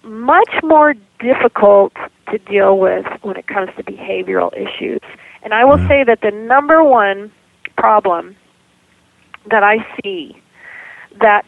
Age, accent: 40-59, American